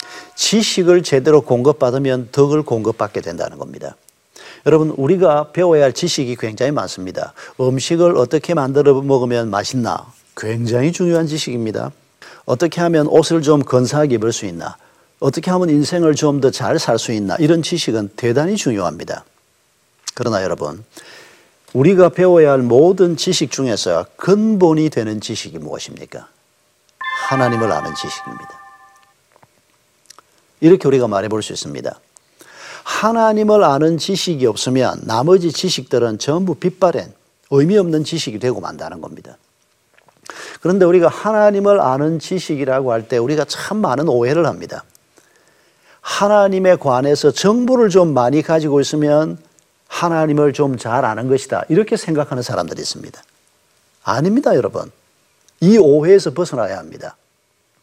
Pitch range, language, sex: 125-175 Hz, Korean, male